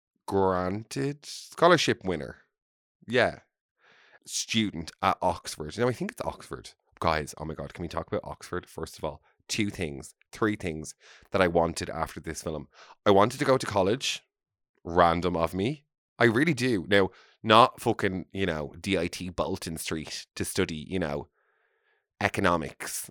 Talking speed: 155 wpm